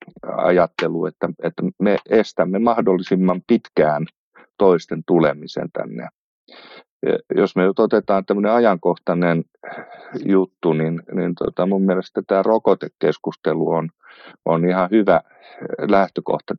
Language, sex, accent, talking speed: Finnish, male, native, 100 wpm